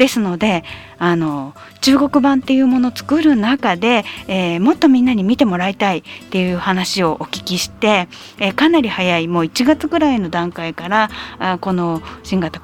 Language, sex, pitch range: Japanese, female, 185-305 Hz